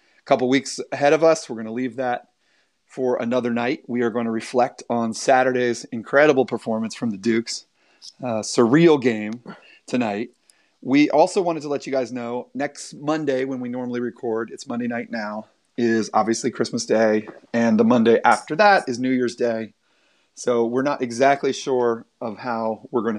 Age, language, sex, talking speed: 30-49, English, male, 180 wpm